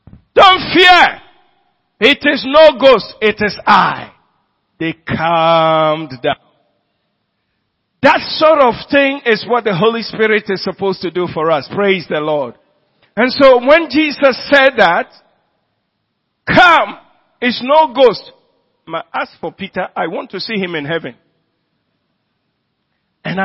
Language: English